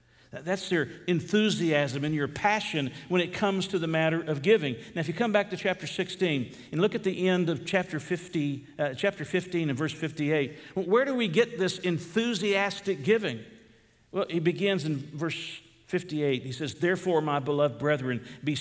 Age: 50-69